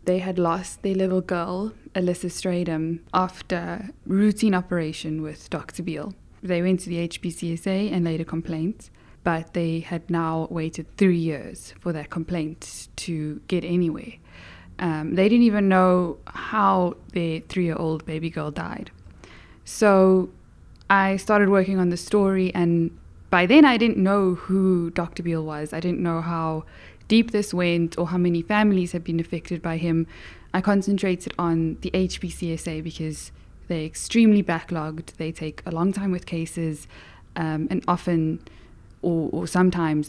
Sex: female